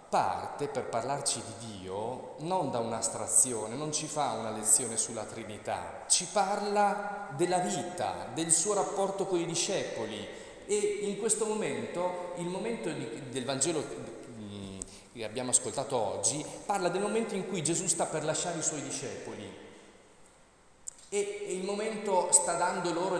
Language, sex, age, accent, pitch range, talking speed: Italian, male, 40-59, native, 155-215 Hz, 140 wpm